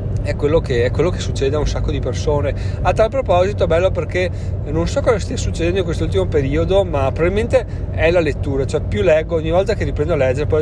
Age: 30-49